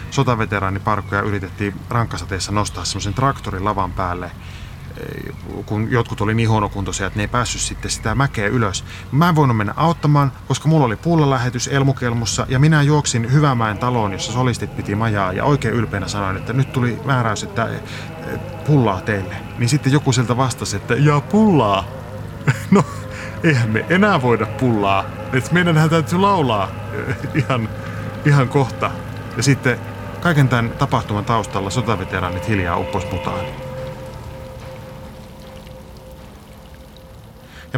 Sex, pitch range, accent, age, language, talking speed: male, 100-135 Hz, native, 30-49, Finnish, 130 wpm